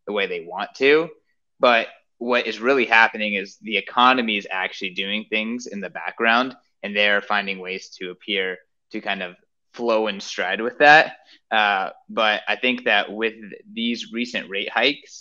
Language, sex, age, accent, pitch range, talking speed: English, male, 20-39, American, 100-125 Hz, 180 wpm